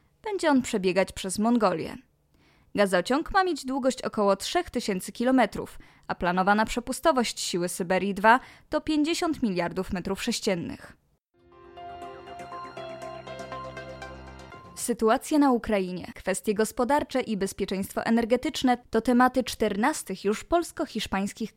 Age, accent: 20-39, native